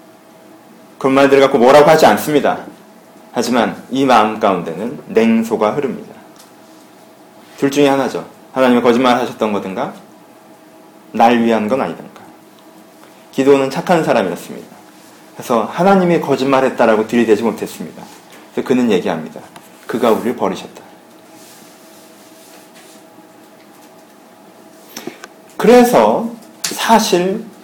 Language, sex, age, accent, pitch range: Korean, male, 40-59, native, 135-210 Hz